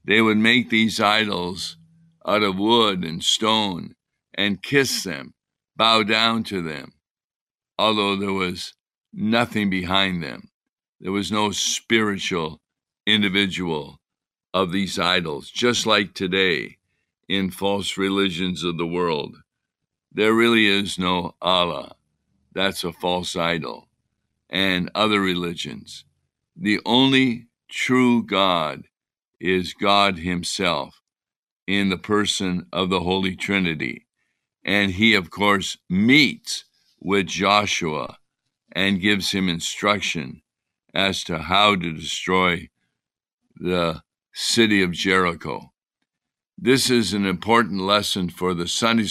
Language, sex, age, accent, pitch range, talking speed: English, male, 60-79, American, 90-110 Hz, 115 wpm